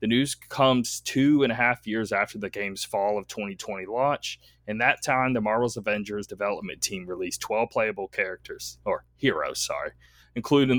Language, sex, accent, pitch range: English, male, American, 95-120 Hz